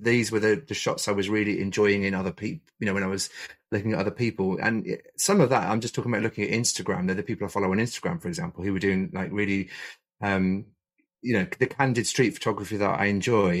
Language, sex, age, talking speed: English, male, 30-49, 245 wpm